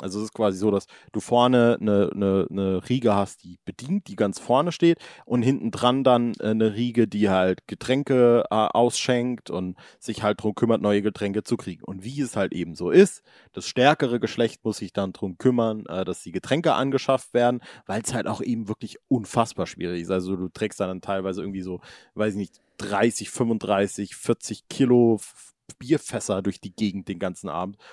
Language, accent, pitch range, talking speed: German, German, 100-125 Hz, 195 wpm